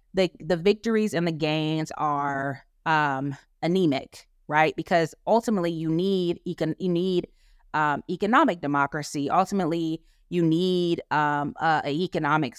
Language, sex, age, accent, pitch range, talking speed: English, female, 20-39, American, 150-195 Hz, 130 wpm